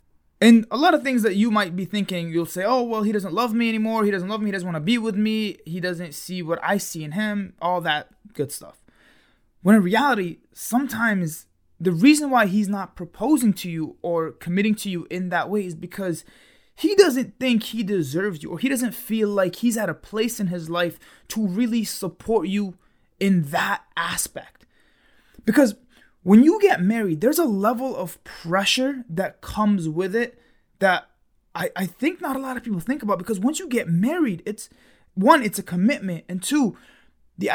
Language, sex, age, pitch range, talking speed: English, male, 20-39, 180-235 Hz, 200 wpm